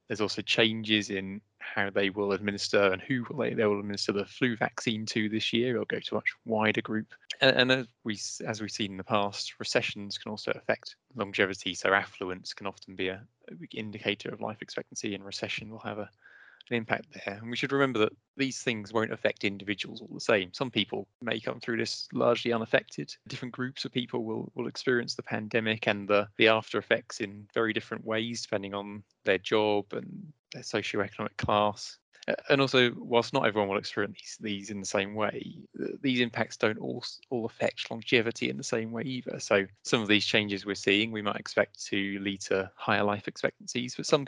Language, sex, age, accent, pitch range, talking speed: English, male, 20-39, British, 100-115 Hz, 205 wpm